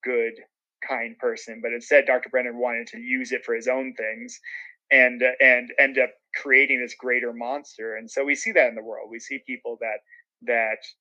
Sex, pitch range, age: male, 125-165 Hz, 30-49